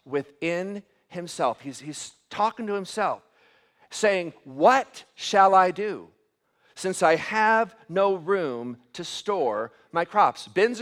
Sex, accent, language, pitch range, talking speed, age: male, American, English, 195-230 Hz, 120 wpm, 50-69